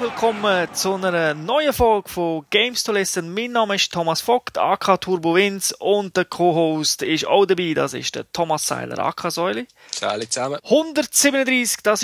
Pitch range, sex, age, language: 160-220 Hz, male, 30-49, German